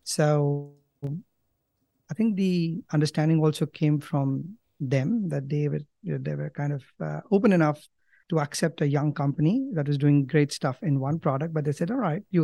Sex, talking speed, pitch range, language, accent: male, 195 wpm, 145-160 Hz, English, Indian